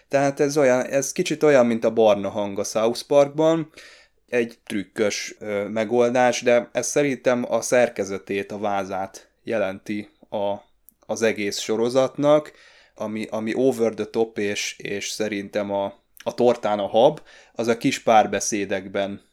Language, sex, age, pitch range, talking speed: Hungarian, male, 20-39, 100-120 Hz, 145 wpm